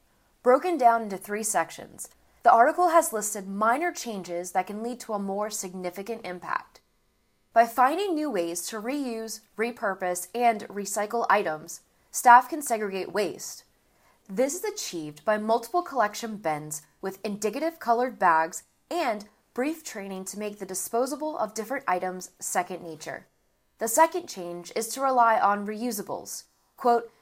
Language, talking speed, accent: English, 145 wpm, American